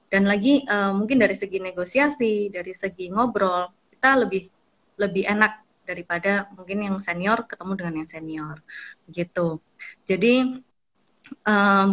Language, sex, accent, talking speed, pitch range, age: Indonesian, female, native, 125 wpm, 185-225 Hz, 20-39